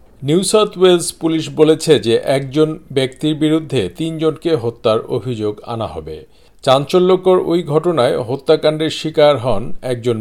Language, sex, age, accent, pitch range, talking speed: Bengali, male, 50-69, native, 125-160 Hz, 125 wpm